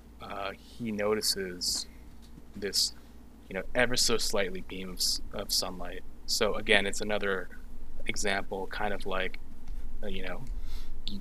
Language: English